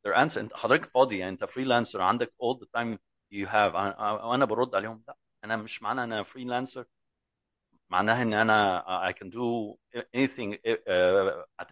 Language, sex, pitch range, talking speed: English, male, 110-160 Hz, 110 wpm